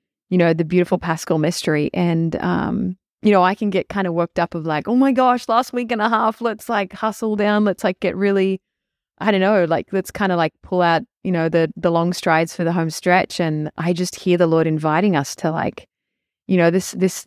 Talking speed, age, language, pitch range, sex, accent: 240 wpm, 30-49, English, 160-190 Hz, female, Australian